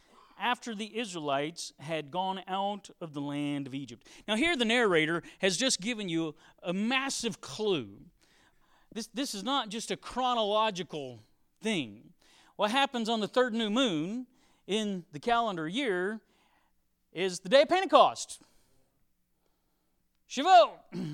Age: 40-59